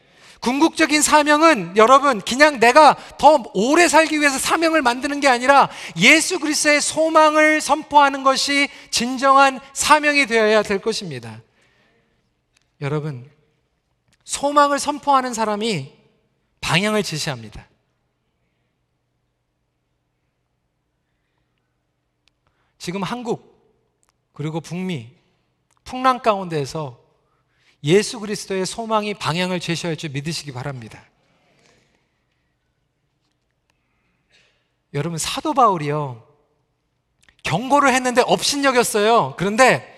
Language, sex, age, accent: Korean, male, 40-59, native